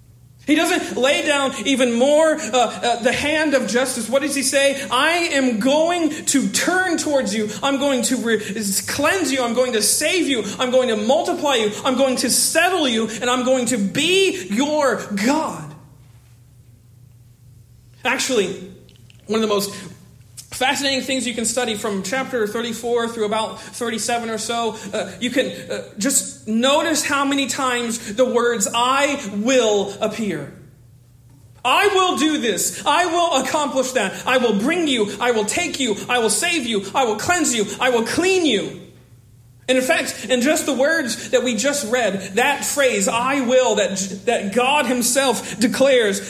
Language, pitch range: English, 210-275 Hz